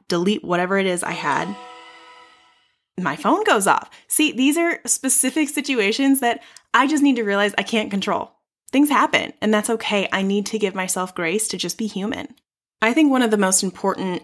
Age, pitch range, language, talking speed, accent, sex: 20-39, 175-230 Hz, English, 195 wpm, American, female